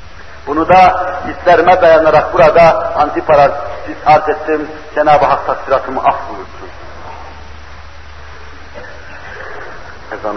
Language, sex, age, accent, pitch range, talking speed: Turkish, male, 60-79, native, 175-215 Hz, 75 wpm